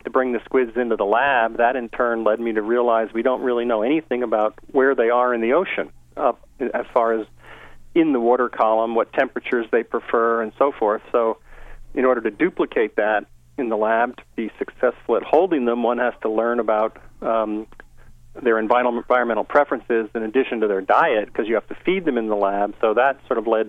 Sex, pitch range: male, 110-120 Hz